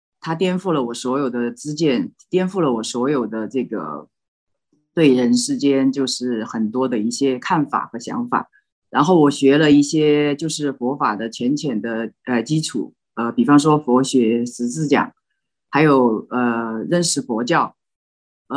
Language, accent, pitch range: Chinese, native, 130-185 Hz